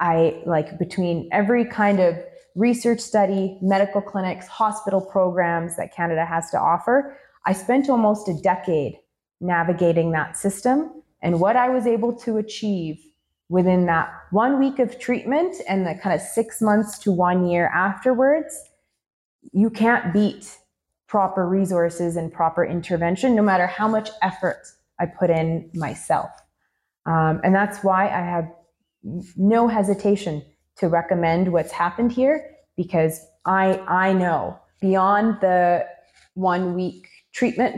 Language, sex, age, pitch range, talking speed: English, female, 20-39, 175-215 Hz, 140 wpm